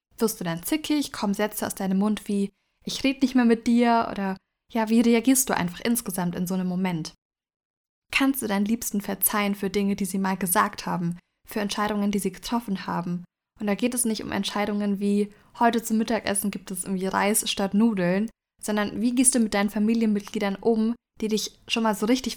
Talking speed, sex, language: 205 wpm, female, German